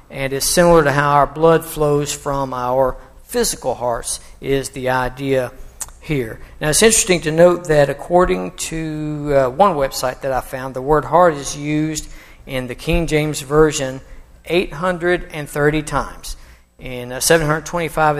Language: English